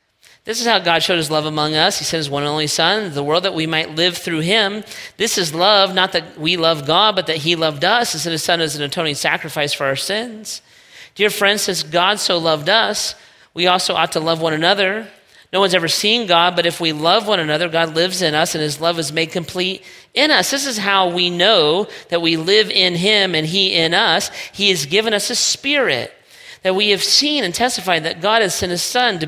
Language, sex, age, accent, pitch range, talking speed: English, male, 40-59, American, 165-205 Hz, 240 wpm